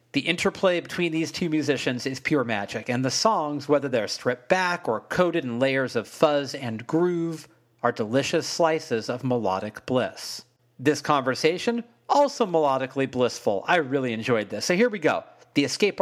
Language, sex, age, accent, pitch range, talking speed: English, male, 40-59, American, 125-165 Hz, 170 wpm